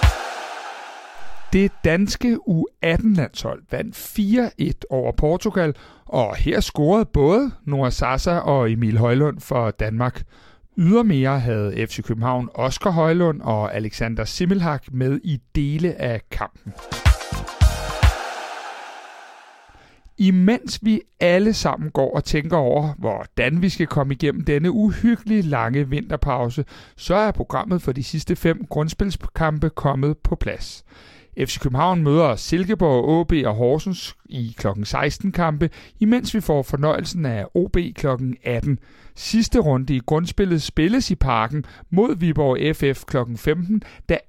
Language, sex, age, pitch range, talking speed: Danish, male, 60-79, 130-195 Hz, 125 wpm